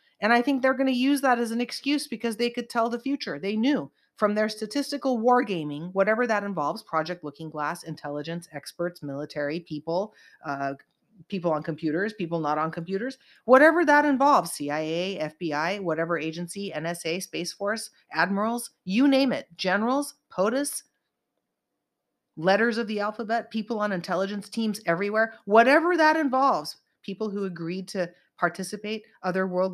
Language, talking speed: English, 155 wpm